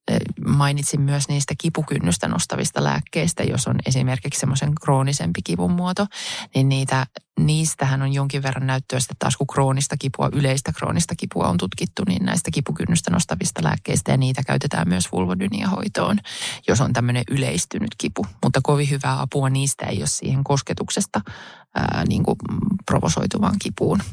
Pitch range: 135-150 Hz